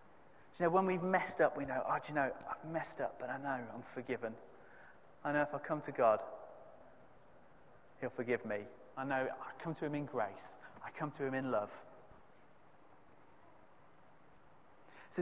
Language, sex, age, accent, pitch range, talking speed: English, male, 30-49, British, 135-175 Hz, 180 wpm